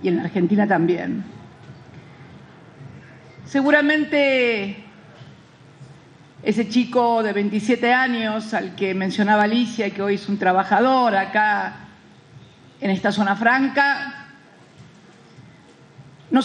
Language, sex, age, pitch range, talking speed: Spanish, female, 50-69, 200-260 Hz, 95 wpm